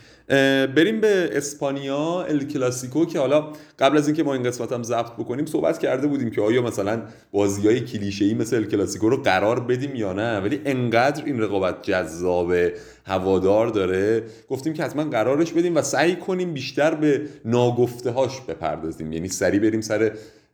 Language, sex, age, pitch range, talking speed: Persian, male, 30-49, 105-145 Hz, 160 wpm